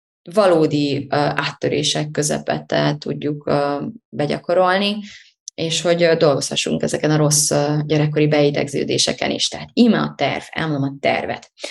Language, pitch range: Hungarian, 150-200 Hz